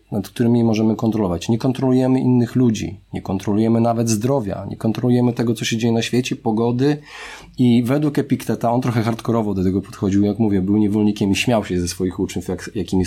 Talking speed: 190 wpm